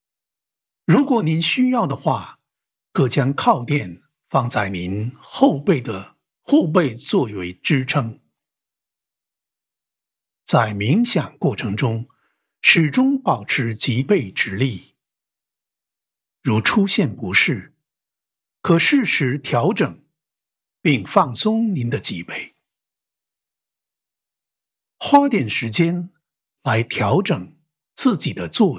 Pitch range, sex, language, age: 110-185 Hz, male, English, 60-79